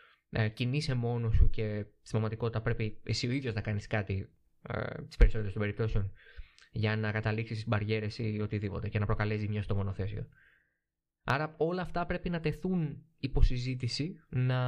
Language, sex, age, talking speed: Greek, male, 20-39, 155 wpm